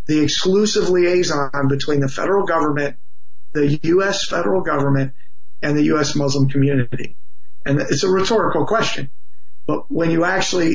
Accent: American